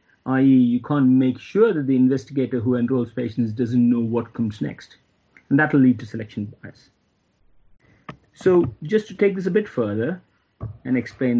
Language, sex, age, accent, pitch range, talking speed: English, male, 50-69, Indian, 120-155 Hz, 175 wpm